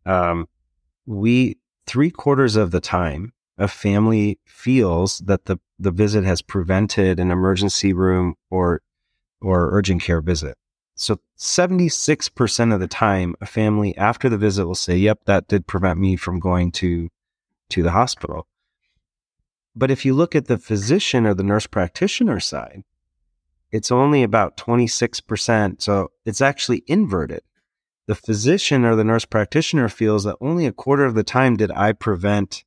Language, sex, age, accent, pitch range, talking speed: English, male, 30-49, American, 95-120 Hz, 155 wpm